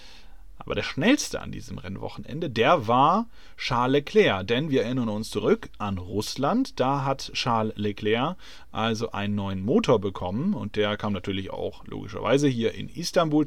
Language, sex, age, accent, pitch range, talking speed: German, male, 30-49, German, 105-130 Hz, 155 wpm